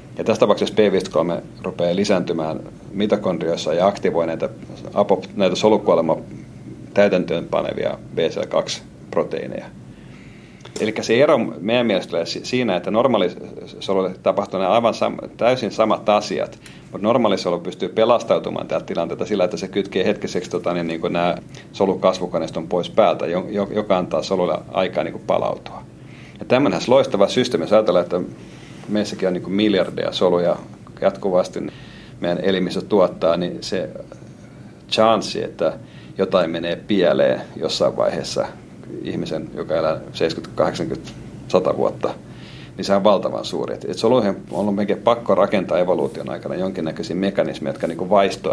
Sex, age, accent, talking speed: male, 40-59, native, 125 wpm